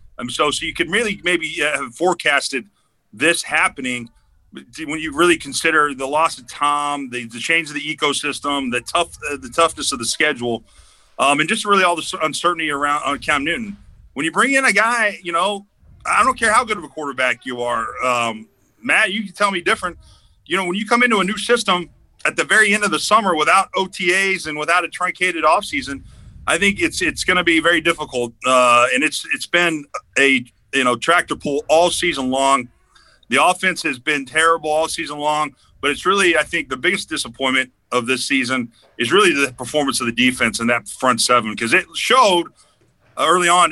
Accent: American